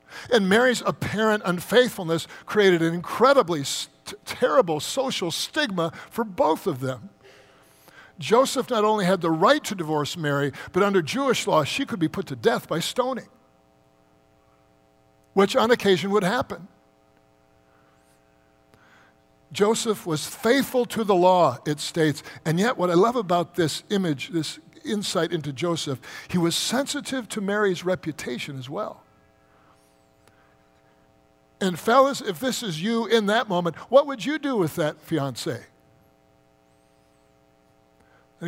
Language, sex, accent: English, male, American